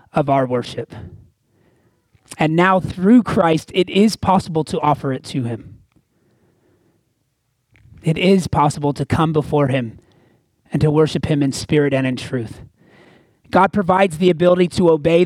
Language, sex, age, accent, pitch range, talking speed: English, male, 30-49, American, 130-210 Hz, 145 wpm